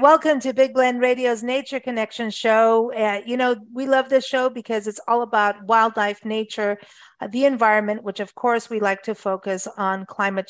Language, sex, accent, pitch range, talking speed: English, female, American, 205-250 Hz, 190 wpm